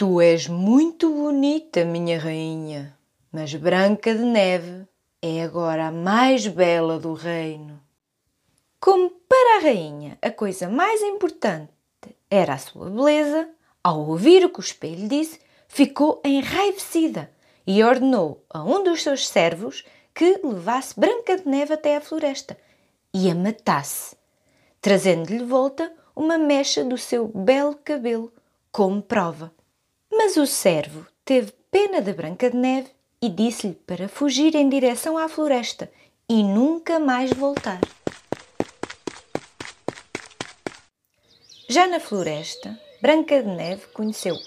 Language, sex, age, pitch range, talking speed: Portuguese, female, 20-39, 190-305 Hz, 125 wpm